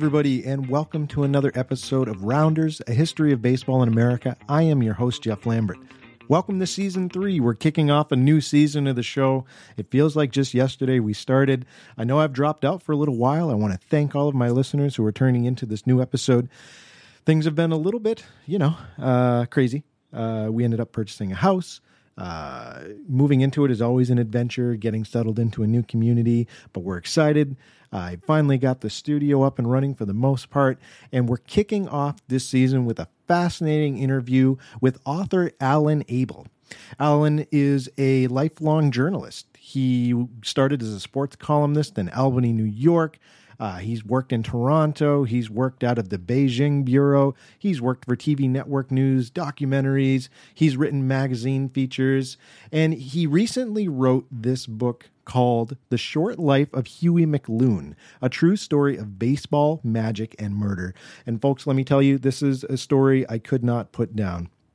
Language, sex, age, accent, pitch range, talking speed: English, male, 40-59, American, 120-150 Hz, 185 wpm